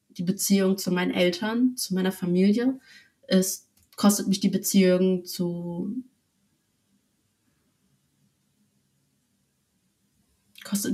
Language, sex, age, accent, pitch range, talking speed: German, female, 30-49, German, 185-225 Hz, 80 wpm